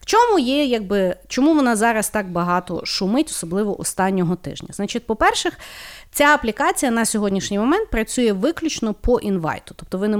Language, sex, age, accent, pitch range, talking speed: Ukrainian, female, 30-49, native, 180-265 Hz, 155 wpm